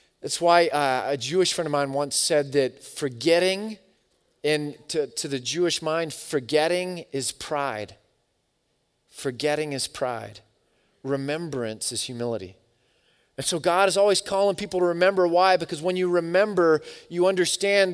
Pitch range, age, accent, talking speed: 135-175 Hz, 30-49, American, 140 wpm